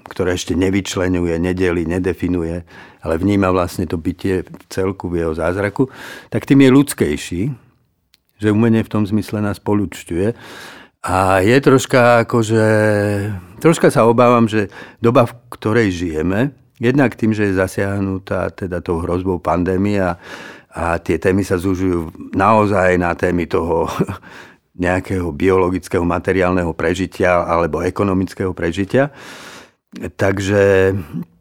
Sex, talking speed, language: male, 120 wpm, Slovak